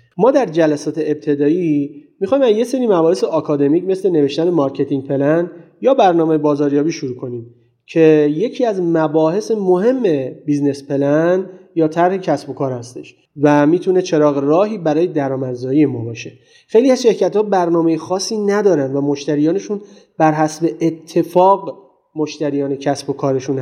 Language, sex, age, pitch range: Persian, male, 30-49, 145-190 Hz